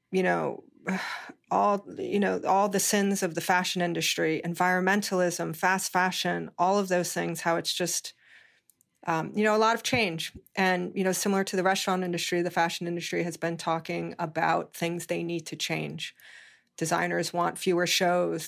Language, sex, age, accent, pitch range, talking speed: English, female, 30-49, American, 170-200 Hz, 170 wpm